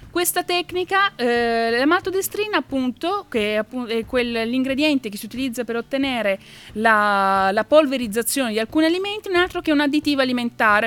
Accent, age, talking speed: native, 30-49, 165 wpm